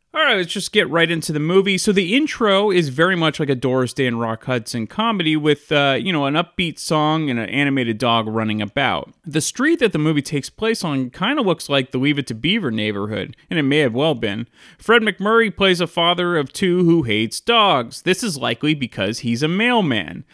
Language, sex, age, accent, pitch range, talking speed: English, male, 30-49, American, 125-180 Hz, 225 wpm